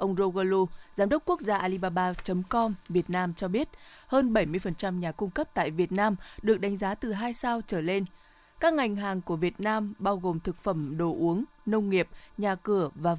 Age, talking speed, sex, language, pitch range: 20-39, 200 wpm, female, Vietnamese, 180-220 Hz